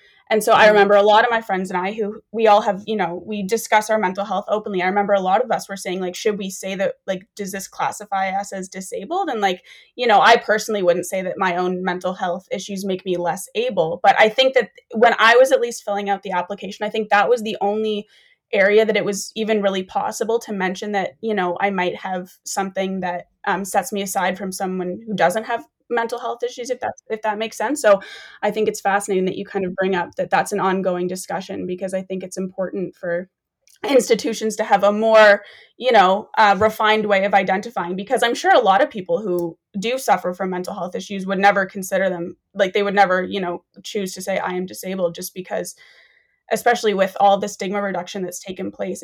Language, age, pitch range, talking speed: English, 20-39, 185-220 Hz, 230 wpm